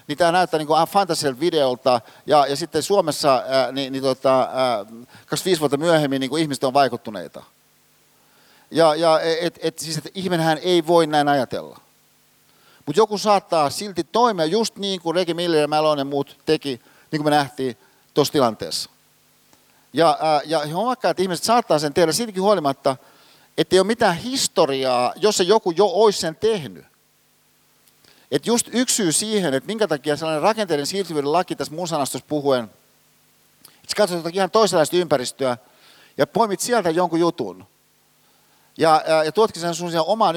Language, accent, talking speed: Finnish, native, 155 wpm